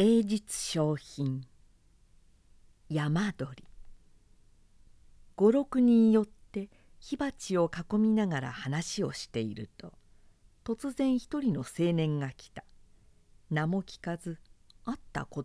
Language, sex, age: Japanese, female, 50-69